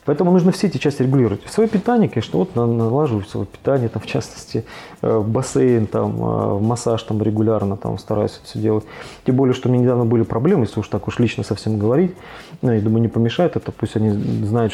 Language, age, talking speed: Russian, 20-39, 205 wpm